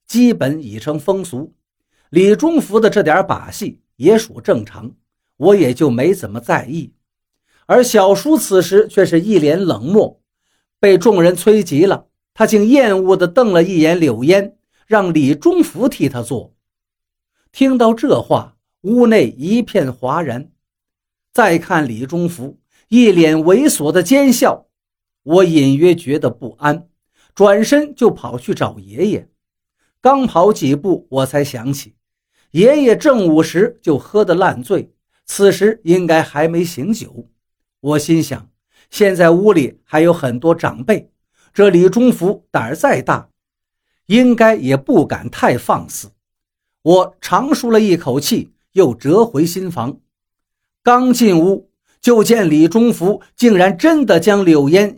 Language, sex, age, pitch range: Chinese, male, 50-69, 145-215 Hz